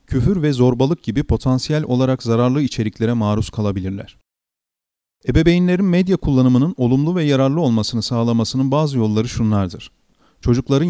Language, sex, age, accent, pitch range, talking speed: Turkish, male, 40-59, native, 105-135 Hz, 120 wpm